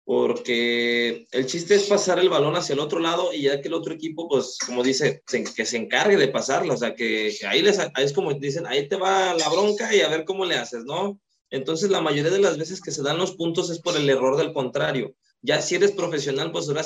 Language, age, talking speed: Spanish, 20-39, 240 wpm